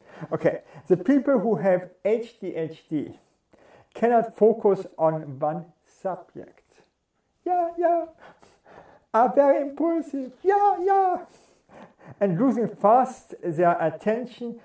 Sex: male